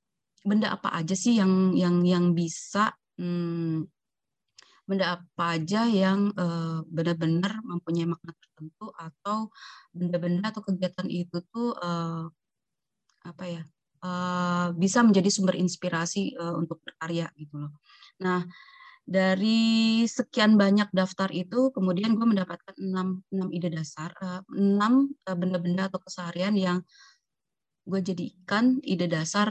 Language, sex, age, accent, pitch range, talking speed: Indonesian, female, 20-39, native, 170-205 Hz, 125 wpm